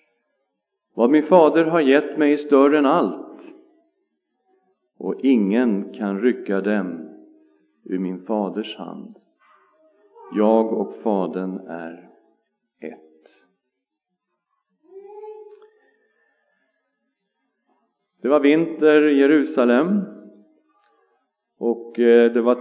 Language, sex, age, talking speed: Swedish, male, 50-69, 80 wpm